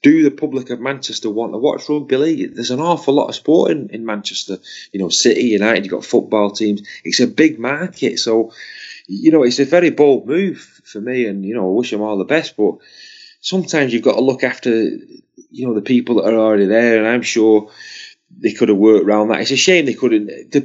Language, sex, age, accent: English, male, 30-49, British